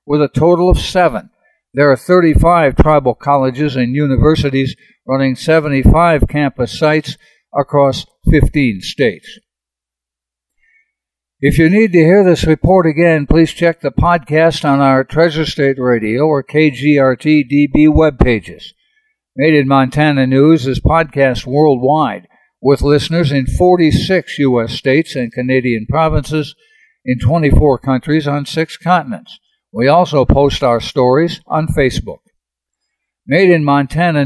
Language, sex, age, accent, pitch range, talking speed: English, male, 60-79, American, 130-160 Hz, 125 wpm